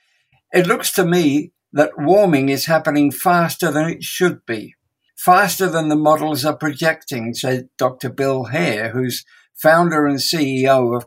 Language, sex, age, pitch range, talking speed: English, male, 60-79, 135-165 Hz, 150 wpm